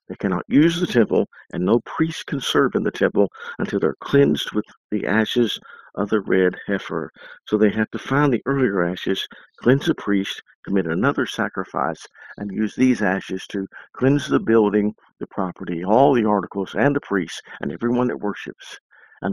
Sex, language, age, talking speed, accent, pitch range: male, English, 50-69, 180 wpm, American, 100-120 Hz